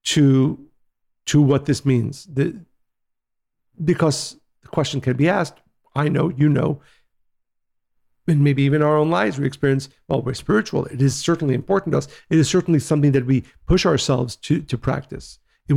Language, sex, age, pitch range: English, male, 50-69, 135-160 Hz